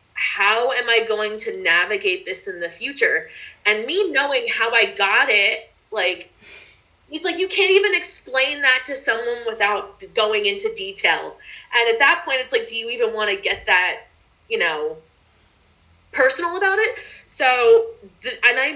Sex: female